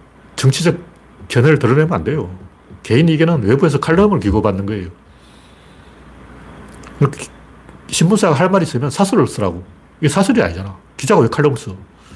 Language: Korean